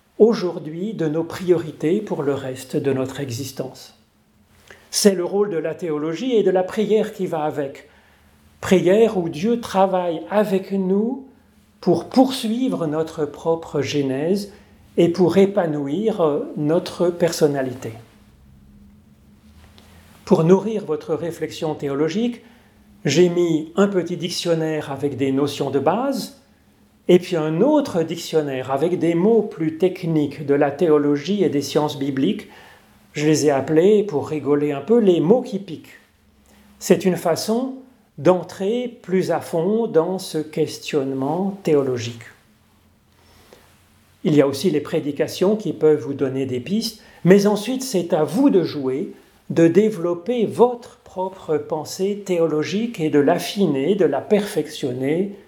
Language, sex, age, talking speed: French, male, 40-59, 135 wpm